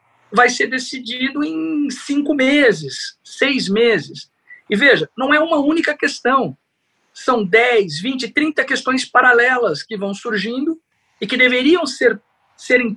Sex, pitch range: male, 190-270 Hz